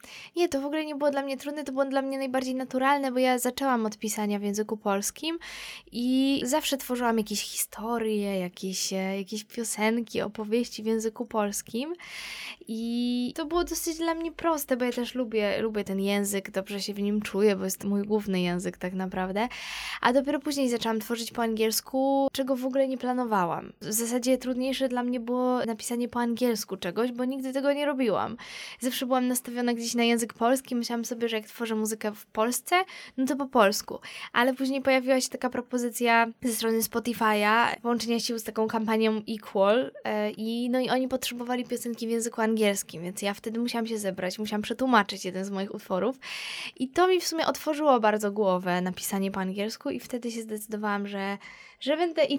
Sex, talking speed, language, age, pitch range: female, 190 wpm, Polish, 20-39, 210-260 Hz